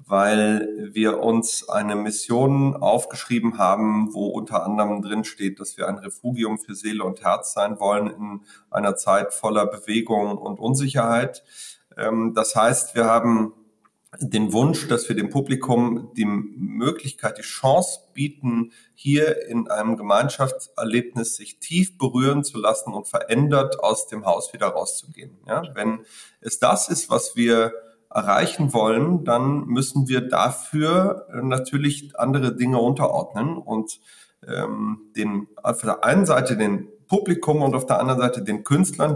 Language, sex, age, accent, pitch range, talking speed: German, male, 30-49, German, 110-145 Hz, 145 wpm